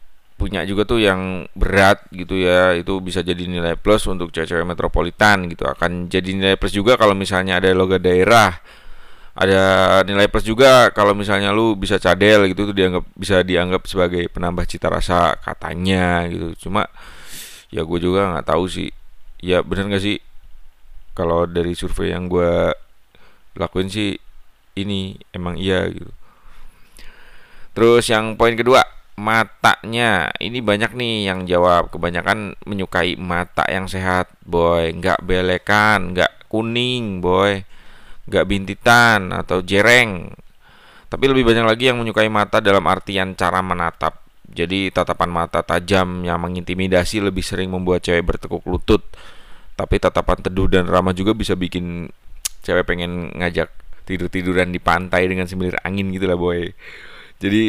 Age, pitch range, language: 30-49, 90-100 Hz, Indonesian